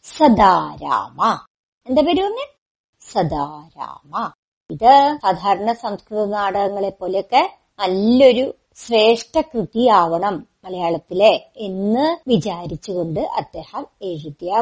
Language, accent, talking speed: Malayalam, native, 75 wpm